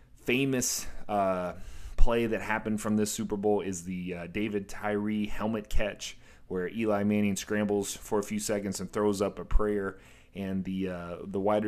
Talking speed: 175 wpm